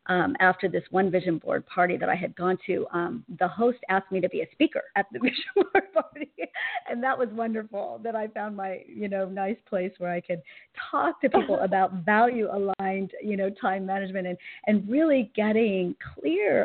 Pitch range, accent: 175-215 Hz, American